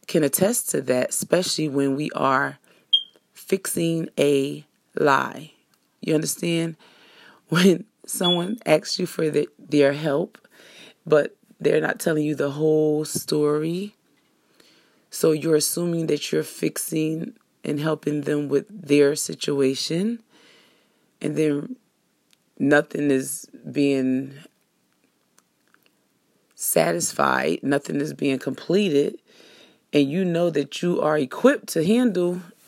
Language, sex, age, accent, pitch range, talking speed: English, female, 30-49, American, 140-180 Hz, 110 wpm